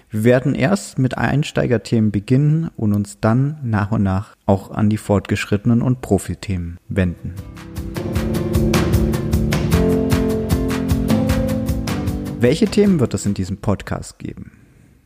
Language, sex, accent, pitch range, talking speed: German, male, German, 105-130 Hz, 110 wpm